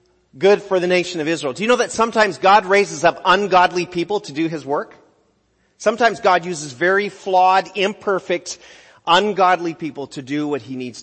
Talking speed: 180 wpm